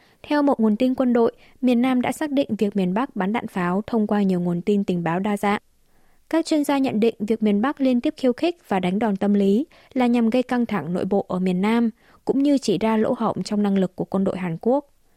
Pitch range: 195-245 Hz